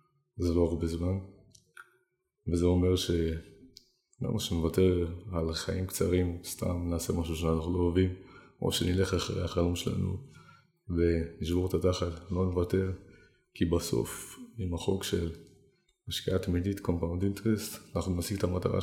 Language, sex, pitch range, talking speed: Hebrew, male, 85-105 Hz, 130 wpm